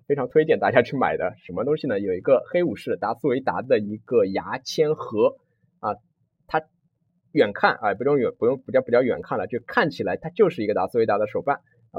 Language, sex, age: Chinese, male, 20-39